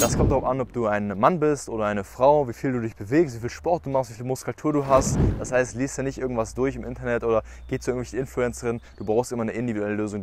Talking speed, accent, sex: 275 wpm, German, male